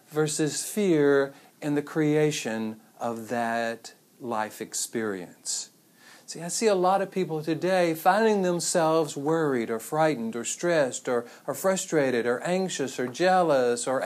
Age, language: 50-69, English